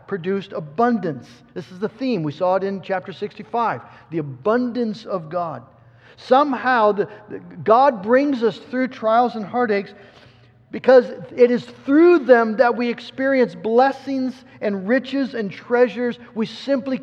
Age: 50-69